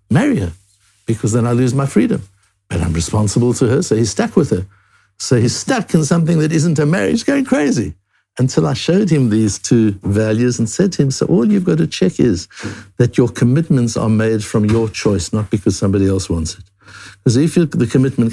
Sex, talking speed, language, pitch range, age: male, 215 wpm, English, 105-170 Hz, 60-79